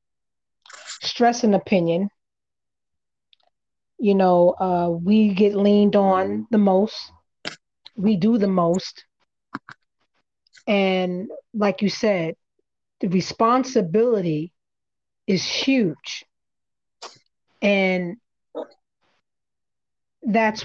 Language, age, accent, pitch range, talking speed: English, 30-49, American, 195-230 Hz, 75 wpm